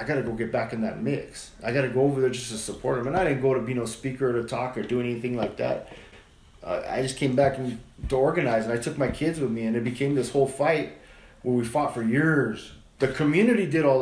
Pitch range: 125-160 Hz